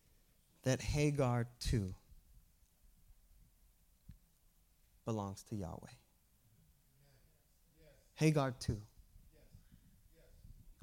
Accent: American